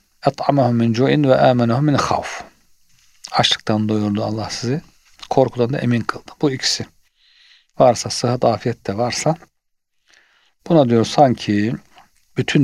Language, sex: Turkish, male